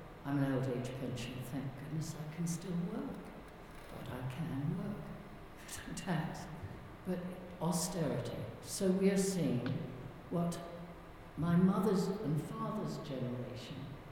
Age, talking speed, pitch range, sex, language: 60-79, 120 wpm, 145-185 Hz, female, English